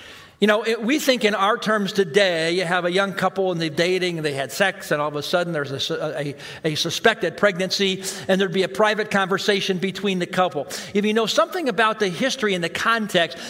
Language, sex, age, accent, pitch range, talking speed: English, male, 50-69, American, 175-210 Hz, 220 wpm